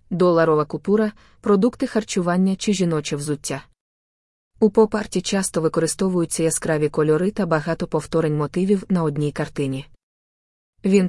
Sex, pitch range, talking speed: female, 155-185 Hz, 115 wpm